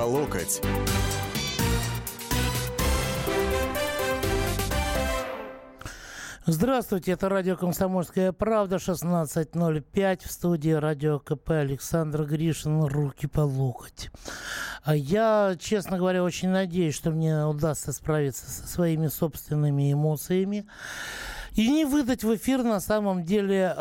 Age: 60-79